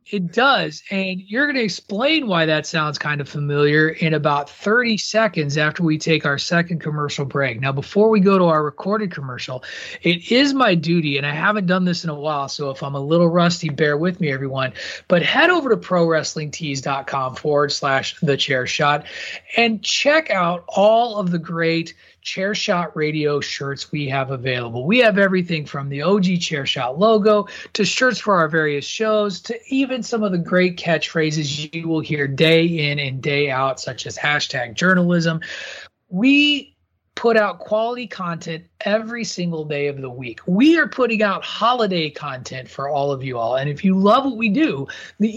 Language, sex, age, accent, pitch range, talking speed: English, male, 30-49, American, 150-215 Hz, 185 wpm